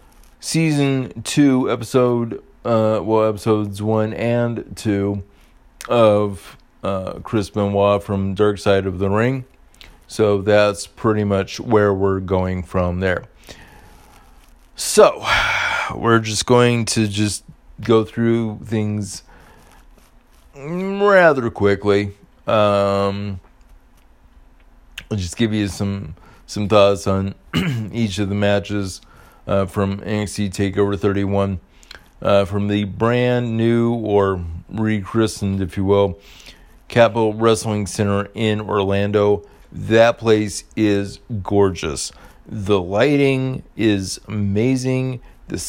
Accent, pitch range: American, 100-115 Hz